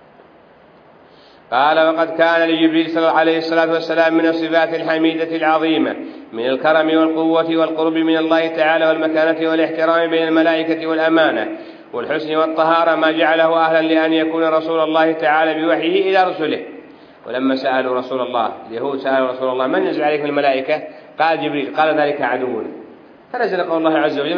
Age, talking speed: 40-59, 140 wpm